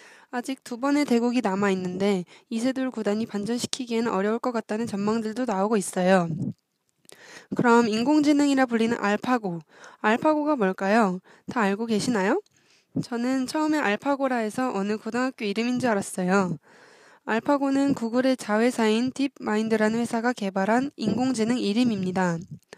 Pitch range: 210-265 Hz